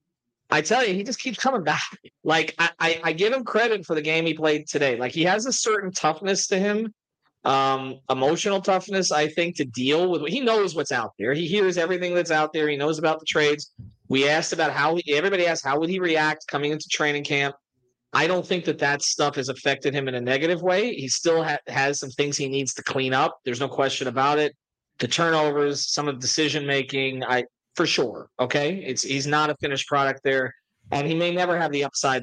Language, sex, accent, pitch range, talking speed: English, male, American, 135-170 Hz, 220 wpm